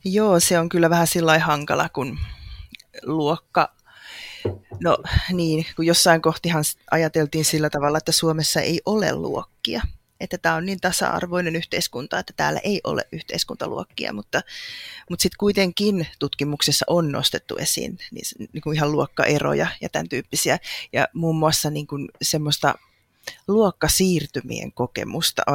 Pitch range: 150-180 Hz